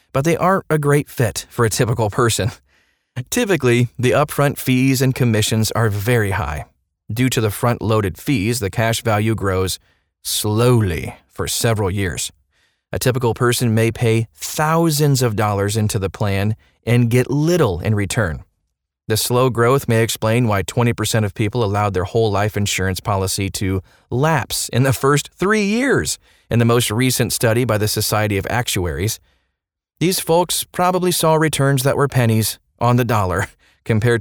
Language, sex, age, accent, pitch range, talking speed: English, male, 30-49, American, 100-135 Hz, 160 wpm